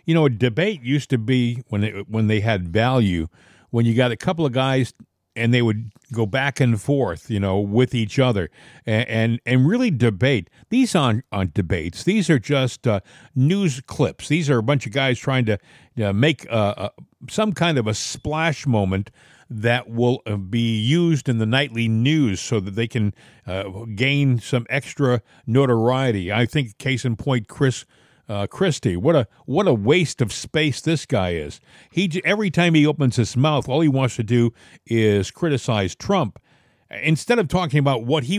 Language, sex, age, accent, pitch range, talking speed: English, male, 50-69, American, 115-155 Hz, 190 wpm